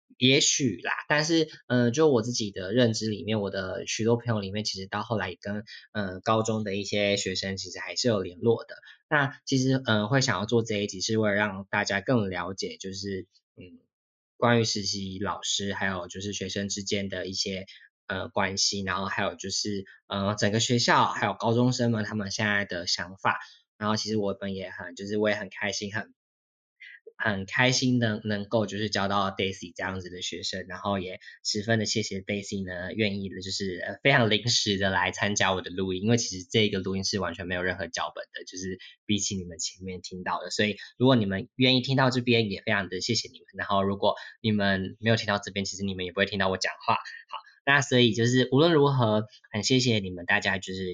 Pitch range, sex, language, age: 95-115 Hz, male, Chinese, 10-29